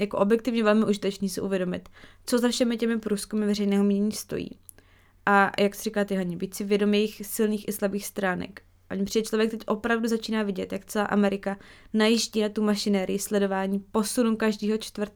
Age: 20-39